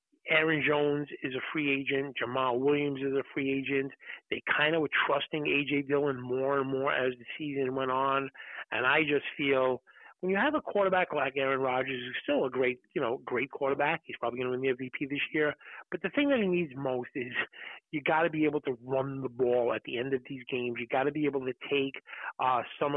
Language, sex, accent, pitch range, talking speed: English, male, American, 130-150 Hz, 230 wpm